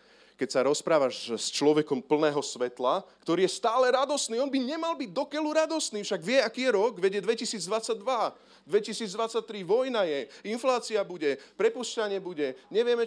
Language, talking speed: Slovak, 145 wpm